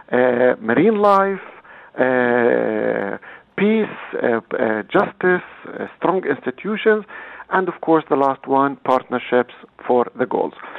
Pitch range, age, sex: 120-180 Hz, 50-69, male